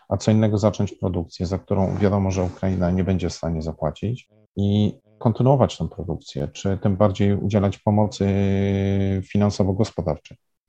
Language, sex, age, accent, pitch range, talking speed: Polish, male, 40-59, native, 95-110 Hz, 140 wpm